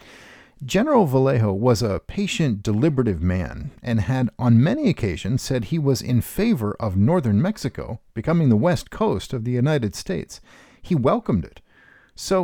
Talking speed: 155 wpm